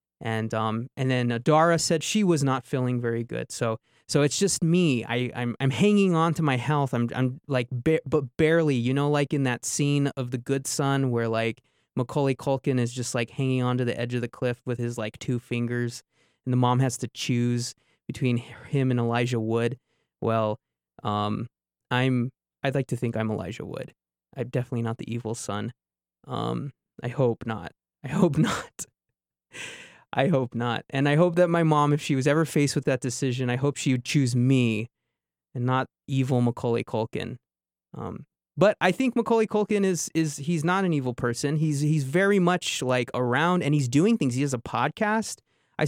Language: English